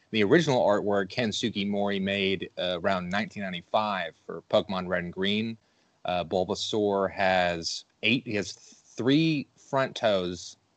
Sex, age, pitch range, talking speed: male, 30-49, 90-105 Hz, 130 wpm